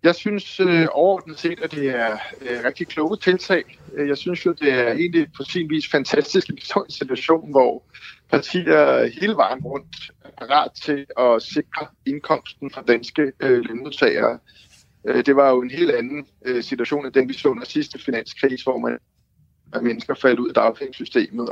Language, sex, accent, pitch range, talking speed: Danish, male, native, 125-175 Hz, 170 wpm